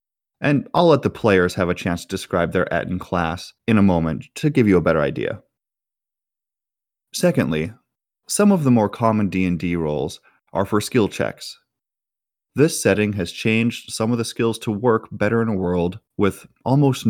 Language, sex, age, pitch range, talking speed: English, male, 30-49, 90-115 Hz, 180 wpm